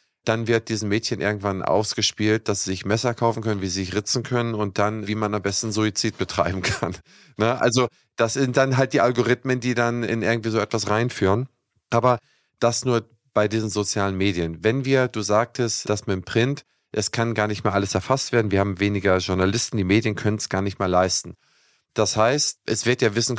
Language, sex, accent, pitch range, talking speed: German, male, German, 105-120 Hz, 210 wpm